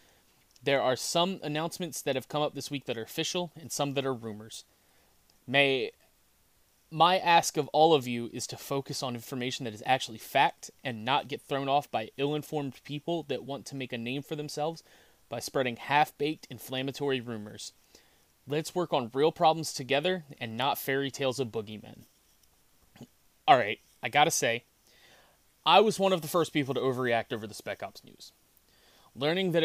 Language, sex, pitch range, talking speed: English, male, 120-155 Hz, 175 wpm